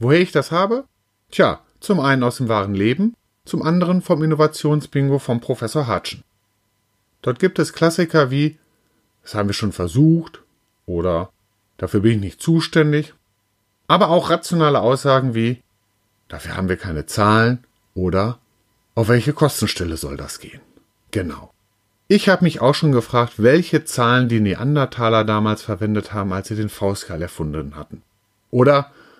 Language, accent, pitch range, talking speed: German, German, 100-150 Hz, 150 wpm